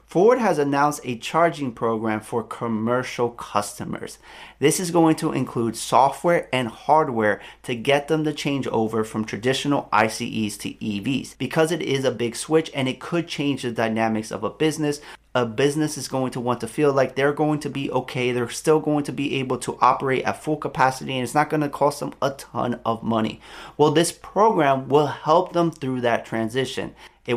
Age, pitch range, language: 30-49, 120-145 Hz, English